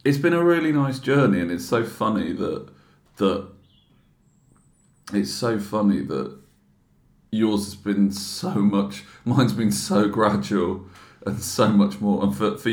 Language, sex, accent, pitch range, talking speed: English, male, British, 100-110 Hz, 150 wpm